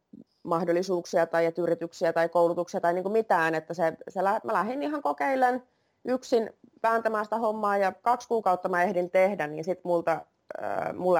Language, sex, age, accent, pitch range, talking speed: Finnish, female, 30-49, native, 165-200 Hz, 160 wpm